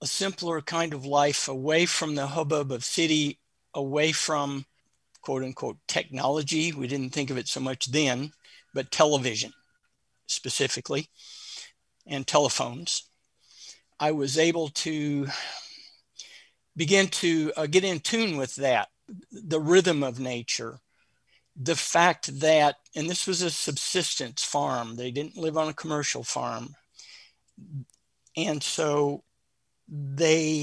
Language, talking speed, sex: English, 125 wpm, male